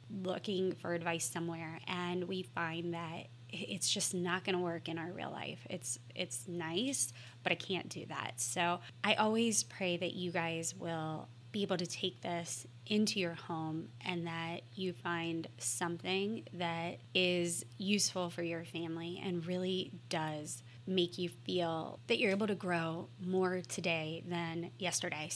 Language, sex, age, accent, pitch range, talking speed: English, female, 20-39, American, 155-185 Hz, 160 wpm